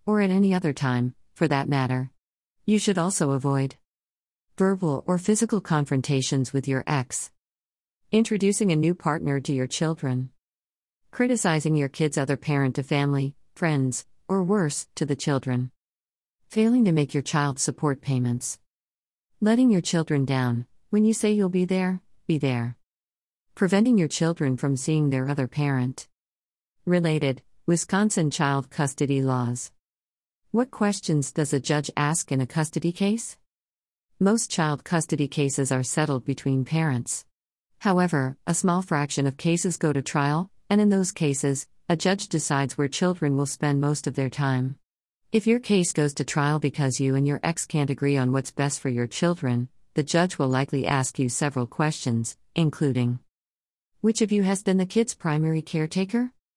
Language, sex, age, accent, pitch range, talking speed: English, female, 50-69, American, 130-175 Hz, 160 wpm